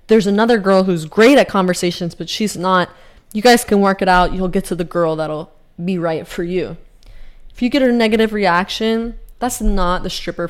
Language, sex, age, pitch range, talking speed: English, female, 20-39, 180-210 Hz, 205 wpm